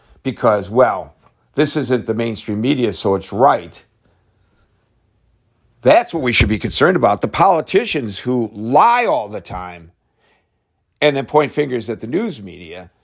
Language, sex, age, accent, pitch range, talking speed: English, male, 50-69, American, 105-140 Hz, 145 wpm